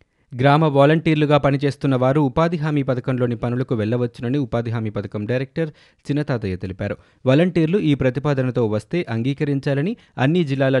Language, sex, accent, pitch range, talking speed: Telugu, male, native, 115-140 Hz, 120 wpm